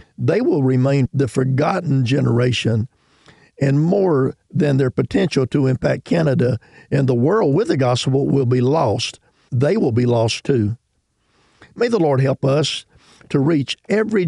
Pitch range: 125-150 Hz